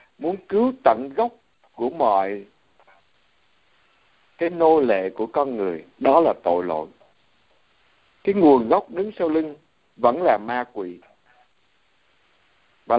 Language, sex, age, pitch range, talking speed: Vietnamese, male, 60-79, 110-175 Hz, 125 wpm